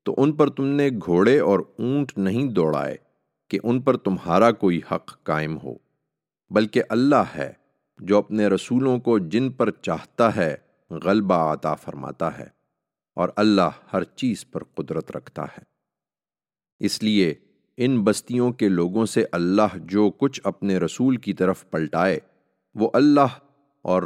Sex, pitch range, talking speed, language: male, 85-115 Hz, 145 wpm, English